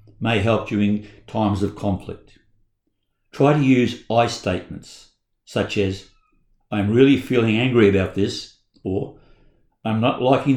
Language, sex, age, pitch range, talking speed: English, male, 60-79, 100-125 Hz, 130 wpm